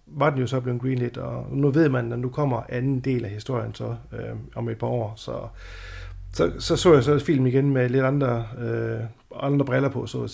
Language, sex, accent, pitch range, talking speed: Danish, male, native, 115-135 Hz, 240 wpm